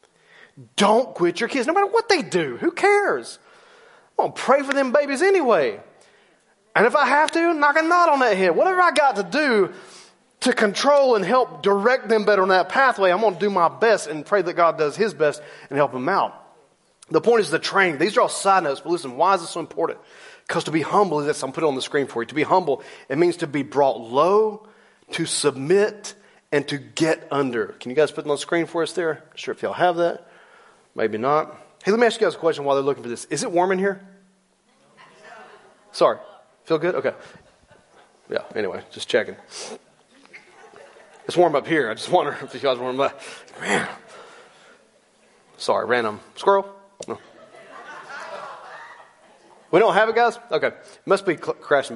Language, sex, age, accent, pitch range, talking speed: English, male, 30-49, American, 150-235 Hz, 210 wpm